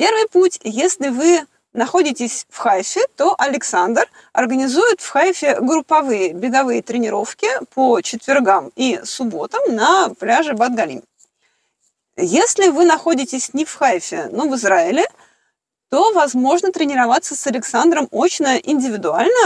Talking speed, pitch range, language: 115 wpm, 250-340 Hz, Russian